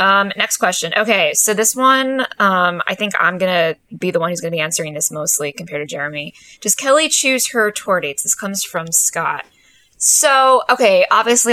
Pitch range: 175-225 Hz